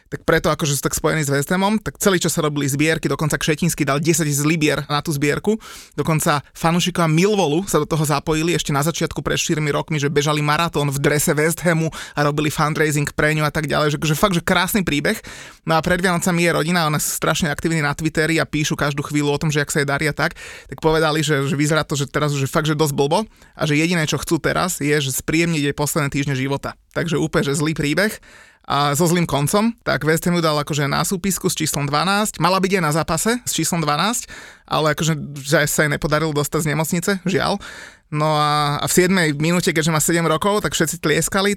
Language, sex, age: Slovak, male, 20-39